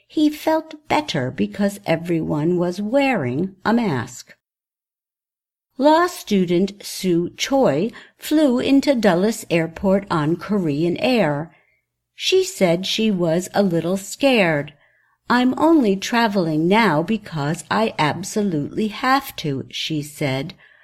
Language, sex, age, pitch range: Chinese, female, 60-79, 160-230 Hz